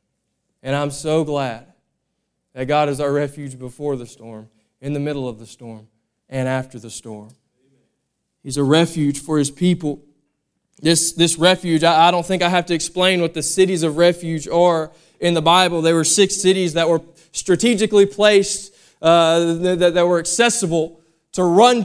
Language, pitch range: English, 165-200 Hz